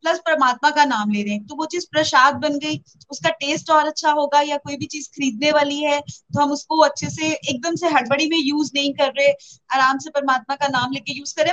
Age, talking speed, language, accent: 30-49, 235 wpm, Hindi, native